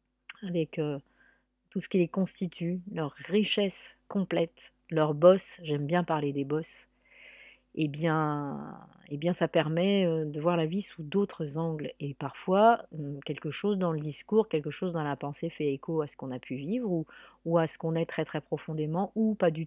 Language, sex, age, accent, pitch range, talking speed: French, female, 40-59, French, 150-180 Hz, 190 wpm